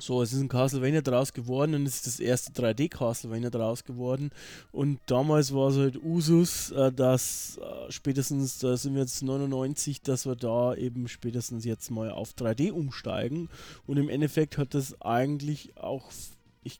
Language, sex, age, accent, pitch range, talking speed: German, male, 20-39, German, 125-155 Hz, 170 wpm